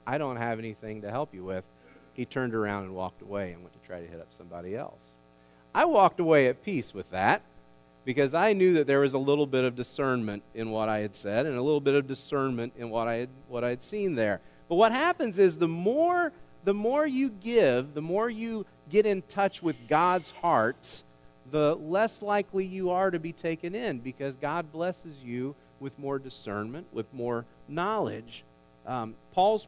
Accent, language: American, English